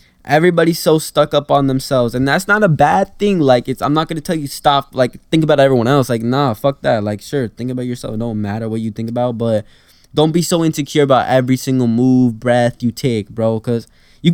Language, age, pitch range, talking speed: English, 10-29, 115-160 Hz, 235 wpm